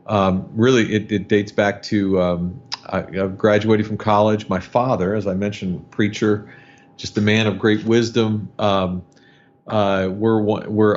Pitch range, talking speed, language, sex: 95-115 Hz, 150 wpm, English, male